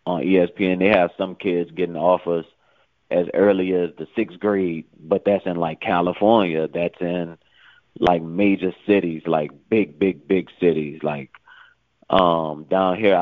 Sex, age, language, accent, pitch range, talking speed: male, 20-39, English, American, 80-95 Hz, 150 wpm